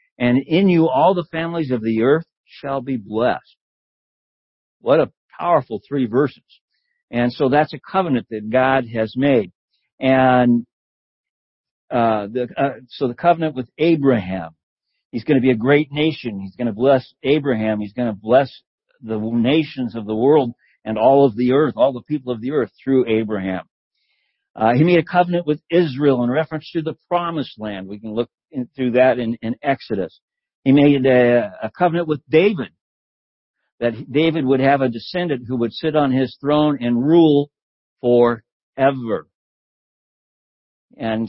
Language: English